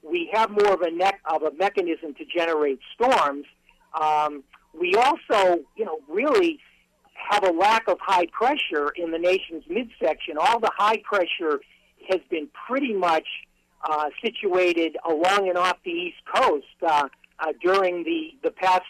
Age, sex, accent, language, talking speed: 50-69, male, American, English, 160 wpm